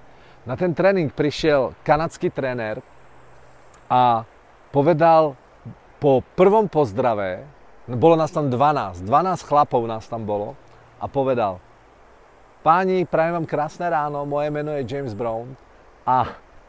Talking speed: 120 wpm